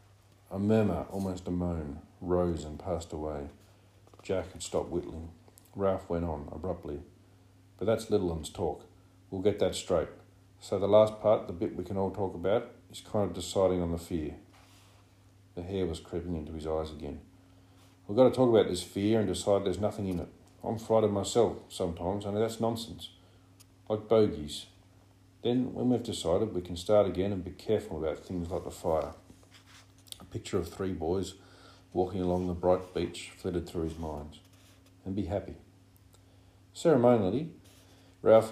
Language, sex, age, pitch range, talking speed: English, male, 40-59, 90-100 Hz, 165 wpm